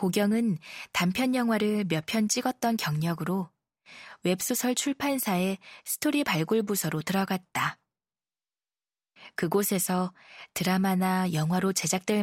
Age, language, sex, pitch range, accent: 20-39, Korean, female, 175-225 Hz, native